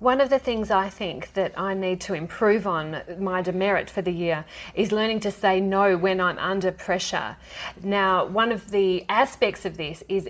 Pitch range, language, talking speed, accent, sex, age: 180-215 Hz, English, 200 wpm, Australian, female, 30-49